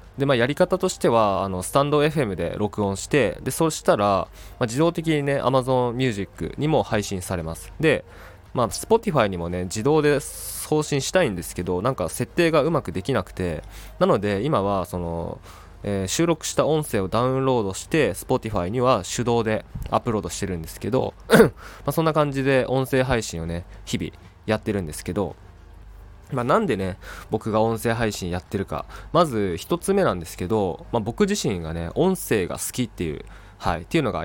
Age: 20-39